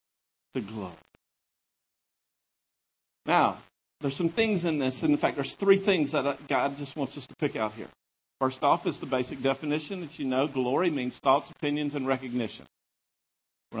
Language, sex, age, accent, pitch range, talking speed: English, male, 50-69, American, 130-200 Hz, 170 wpm